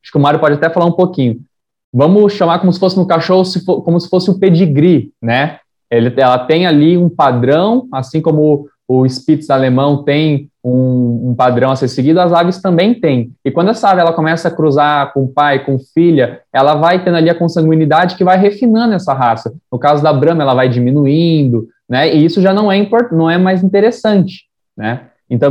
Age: 20-39